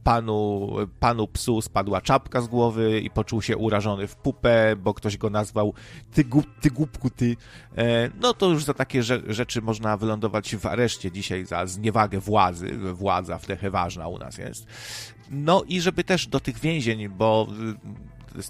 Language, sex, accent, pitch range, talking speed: Polish, male, native, 110-130 Hz, 160 wpm